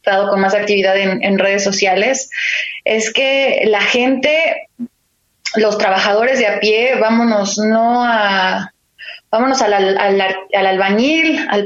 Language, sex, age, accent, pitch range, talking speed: Spanish, female, 20-39, Mexican, 205-260 Hz, 140 wpm